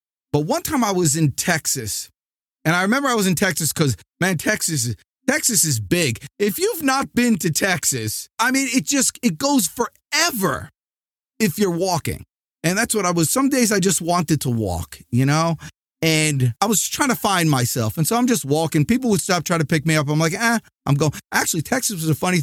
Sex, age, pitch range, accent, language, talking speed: male, 30-49, 140-190 Hz, American, English, 215 wpm